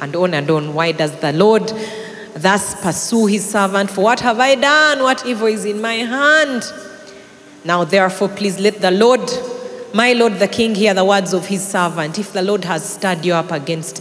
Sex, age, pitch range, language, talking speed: female, 30-49, 165-235 Hz, English, 200 wpm